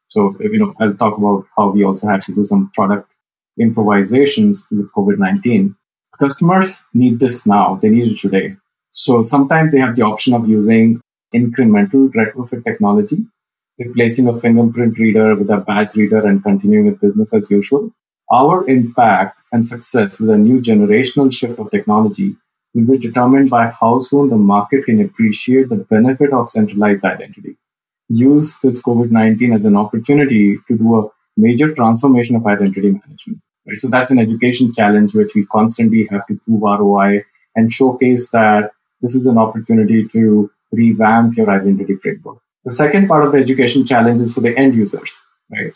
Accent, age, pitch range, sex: Indian, 30-49, 110-140 Hz, male